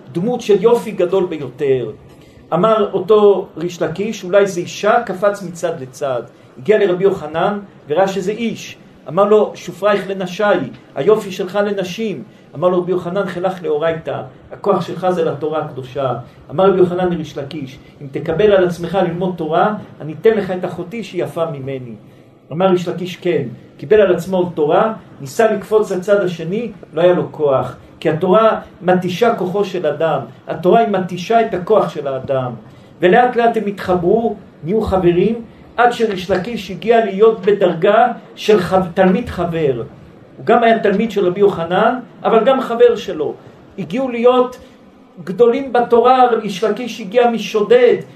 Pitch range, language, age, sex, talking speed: 175-220 Hz, Hebrew, 50-69, male, 145 wpm